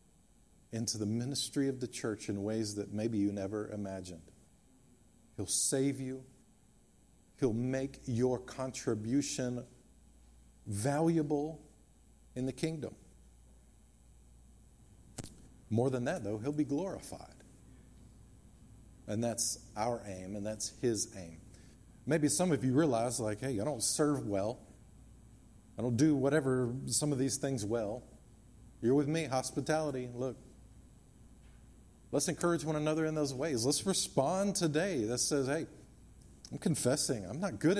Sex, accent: male, American